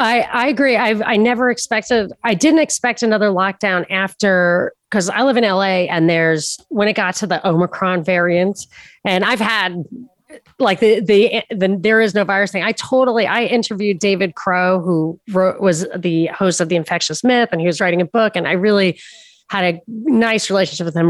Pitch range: 180-225 Hz